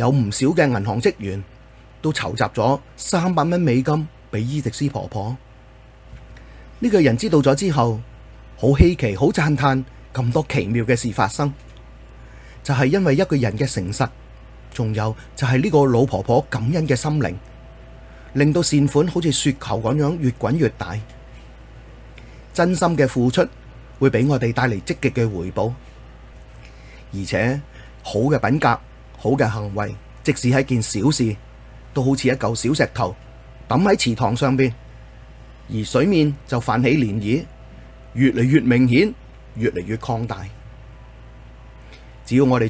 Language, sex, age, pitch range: Chinese, male, 30-49, 110-135 Hz